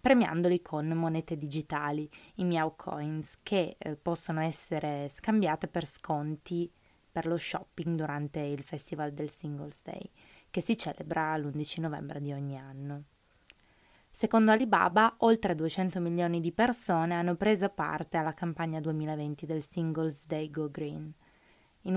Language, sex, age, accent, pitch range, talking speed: Italian, female, 20-39, native, 155-180 Hz, 135 wpm